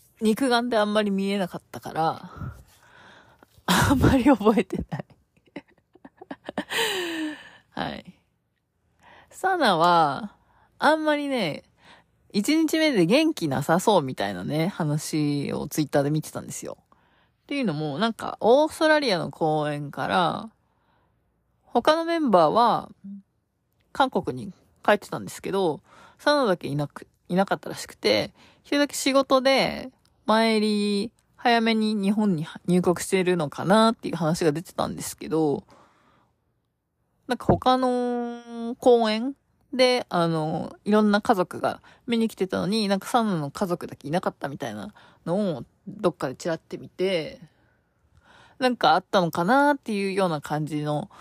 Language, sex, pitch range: Japanese, female, 170-255 Hz